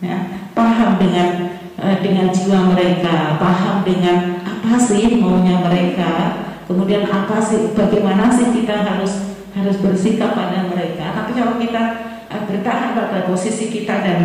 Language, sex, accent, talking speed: Indonesian, female, native, 140 wpm